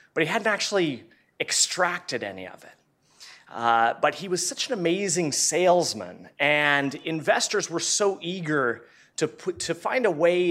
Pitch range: 125-170 Hz